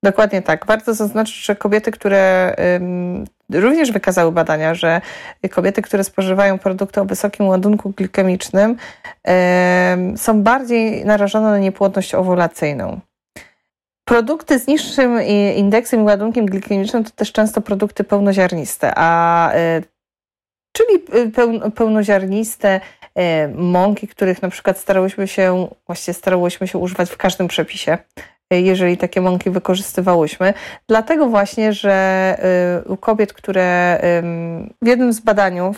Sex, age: female, 30-49